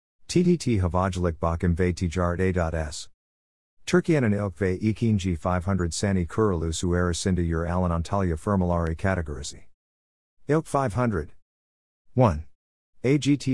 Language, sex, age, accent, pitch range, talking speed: Turkish, male, 50-69, American, 80-110 Hz, 95 wpm